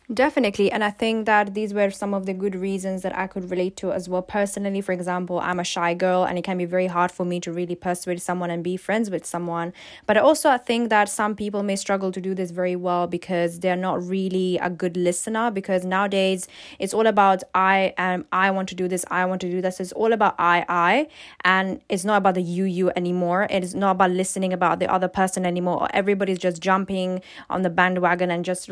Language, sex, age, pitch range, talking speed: English, female, 10-29, 180-200 Hz, 235 wpm